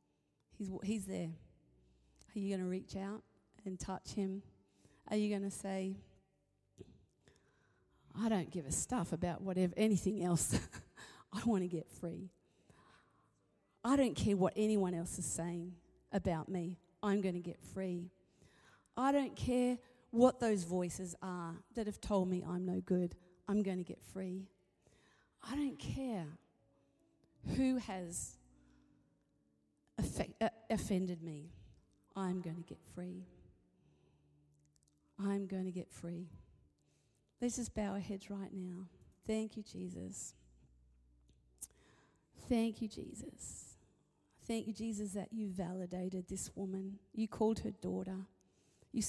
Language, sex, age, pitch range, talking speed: English, female, 40-59, 170-210 Hz, 130 wpm